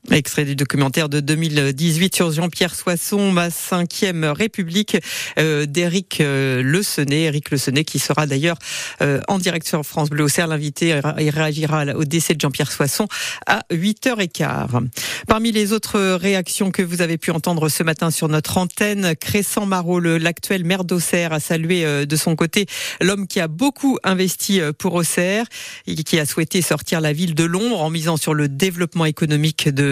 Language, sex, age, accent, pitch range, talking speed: French, female, 50-69, French, 150-190 Hz, 165 wpm